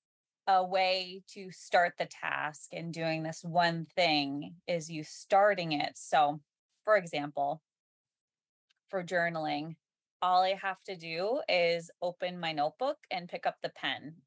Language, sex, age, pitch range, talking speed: English, female, 20-39, 165-225 Hz, 145 wpm